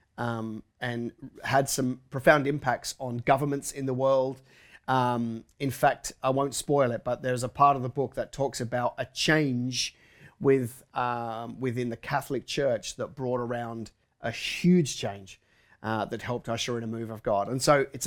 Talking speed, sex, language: 180 wpm, male, English